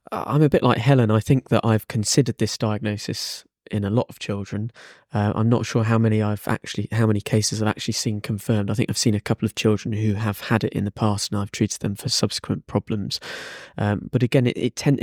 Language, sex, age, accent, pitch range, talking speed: English, male, 20-39, British, 105-115 Hz, 240 wpm